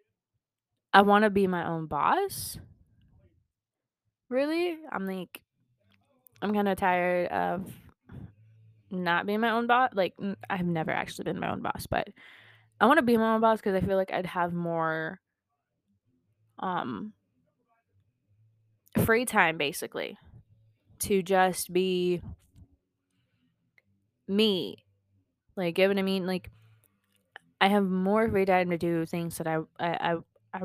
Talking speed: 140 wpm